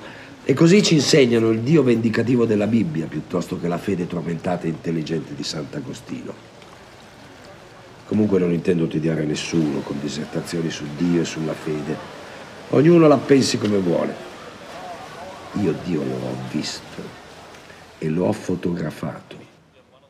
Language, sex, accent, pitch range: Italian, male, native, 85-115 Hz